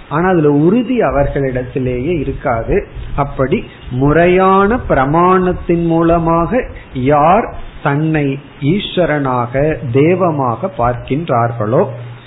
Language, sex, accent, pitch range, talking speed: Tamil, male, native, 130-180 Hz, 65 wpm